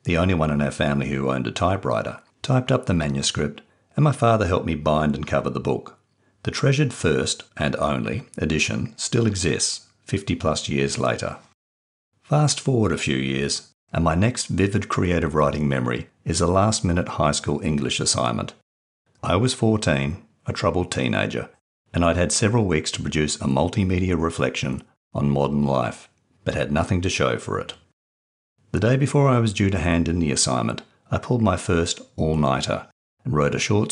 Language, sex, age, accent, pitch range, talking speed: English, male, 50-69, Australian, 70-110 Hz, 180 wpm